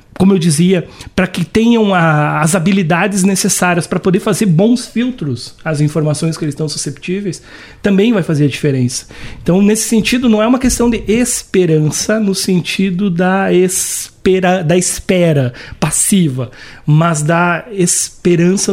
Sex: male